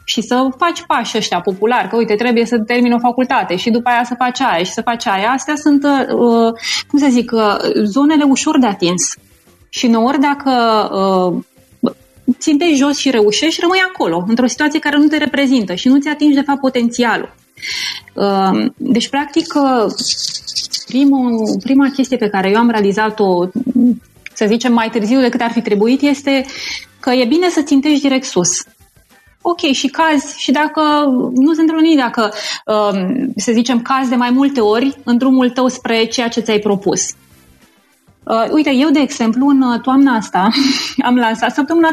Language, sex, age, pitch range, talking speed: Romanian, female, 20-39, 225-275 Hz, 165 wpm